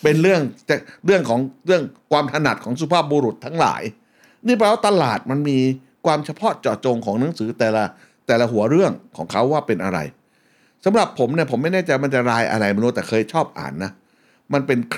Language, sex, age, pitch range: Thai, male, 60-79, 115-155 Hz